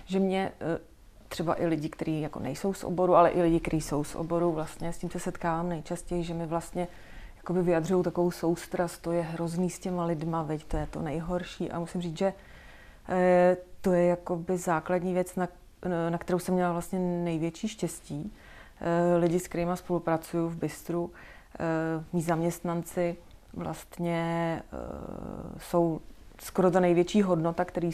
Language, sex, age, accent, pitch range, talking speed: Czech, female, 30-49, native, 165-180 Hz, 165 wpm